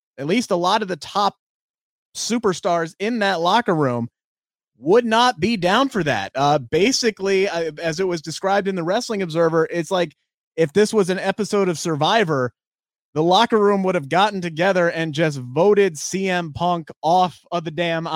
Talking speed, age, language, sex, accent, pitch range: 180 wpm, 30-49, English, male, American, 160-195 Hz